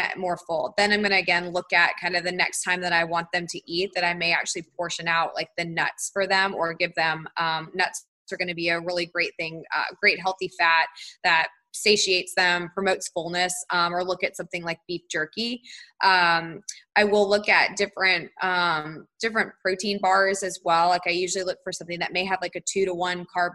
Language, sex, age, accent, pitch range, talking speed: English, female, 20-39, American, 170-190 Hz, 225 wpm